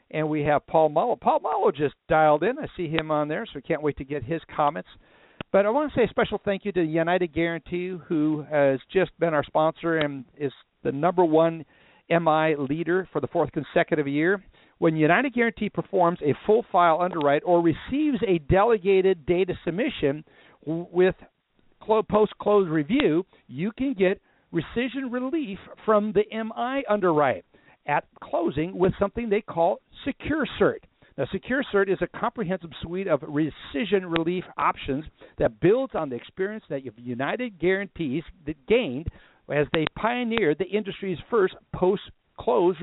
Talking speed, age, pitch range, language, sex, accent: 160 wpm, 60-79, 155-210 Hz, English, male, American